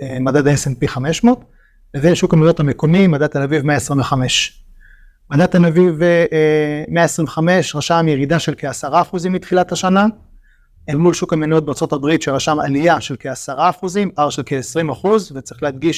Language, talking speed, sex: Hebrew, 145 wpm, male